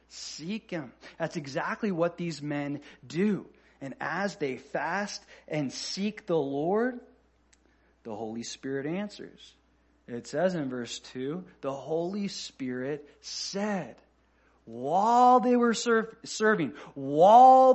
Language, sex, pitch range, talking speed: English, male, 150-215 Hz, 120 wpm